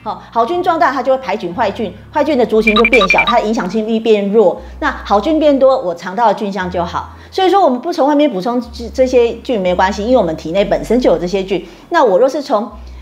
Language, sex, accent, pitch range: Chinese, female, American, 195-275 Hz